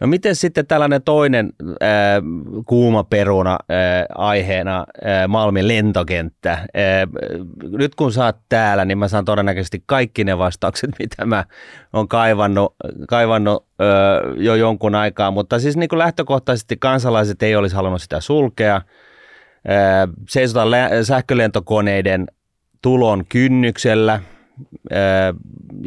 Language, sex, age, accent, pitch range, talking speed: Finnish, male, 30-49, native, 95-120 Hz, 120 wpm